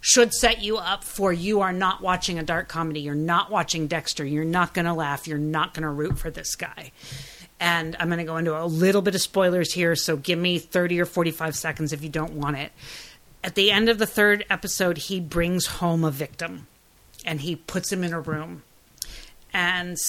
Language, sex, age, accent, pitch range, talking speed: English, female, 40-59, American, 155-185 Hz, 220 wpm